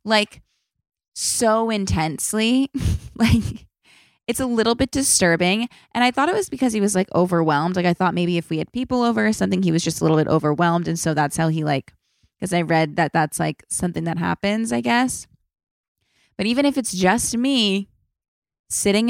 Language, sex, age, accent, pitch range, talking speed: English, female, 20-39, American, 160-200 Hz, 190 wpm